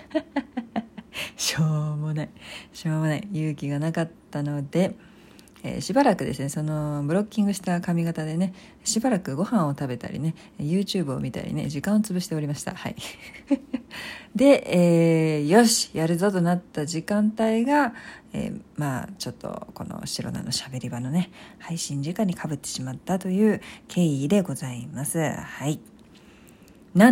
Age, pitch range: 50-69, 150-210 Hz